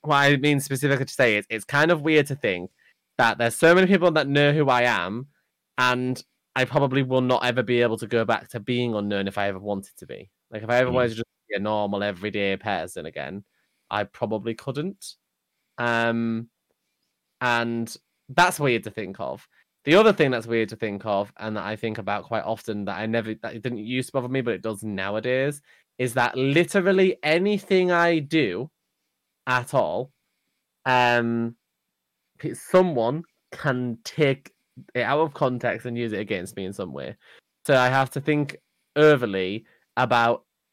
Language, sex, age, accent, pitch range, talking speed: English, male, 20-39, British, 115-155 Hz, 185 wpm